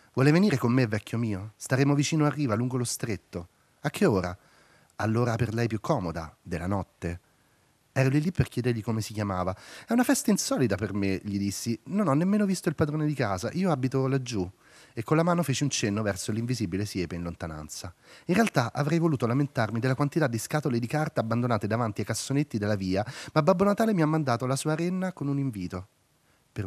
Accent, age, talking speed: native, 30-49, 205 wpm